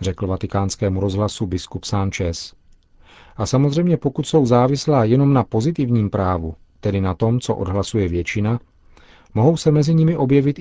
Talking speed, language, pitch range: 140 wpm, Czech, 95-125 Hz